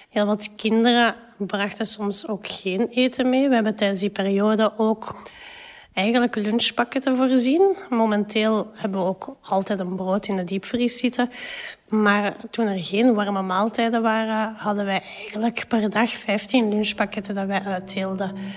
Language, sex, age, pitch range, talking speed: Dutch, female, 30-49, 195-230 Hz, 150 wpm